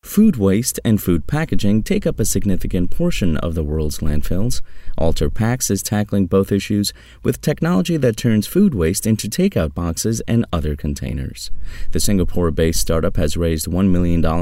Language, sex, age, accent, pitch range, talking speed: English, male, 30-49, American, 80-110 Hz, 160 wpm